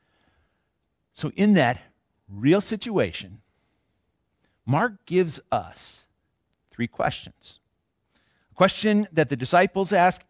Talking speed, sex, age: 95 wpm, male, 50-69